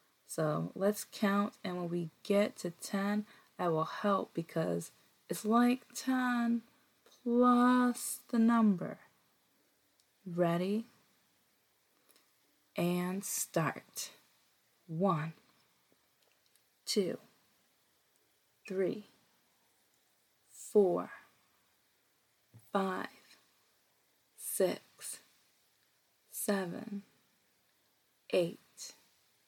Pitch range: 185-240 Hz